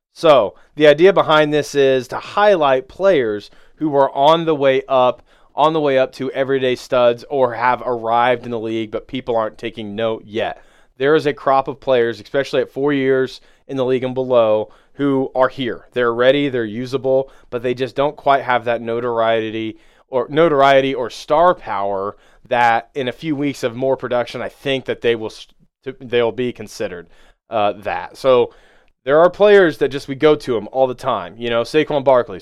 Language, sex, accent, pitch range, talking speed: English, male, American, 125-155 Hz, 195 wpm